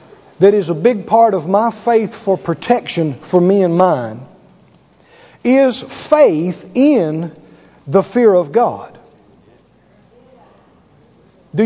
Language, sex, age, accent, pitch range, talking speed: English, male, 40-59, American, 190-245 Hz, 115 wpm